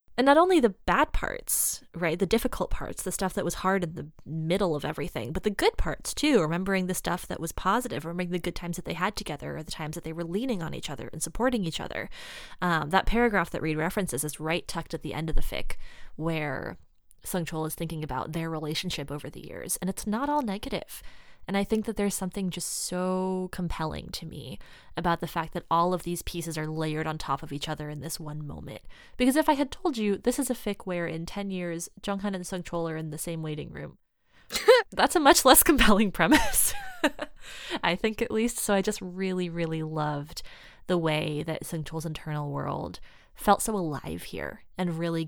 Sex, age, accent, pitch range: female, 20-39, American, 155-200 Hz